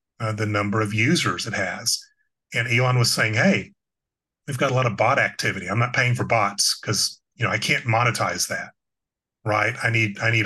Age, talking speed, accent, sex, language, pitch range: 30-49, 205 wpm, American, male, English, 110-140 Hz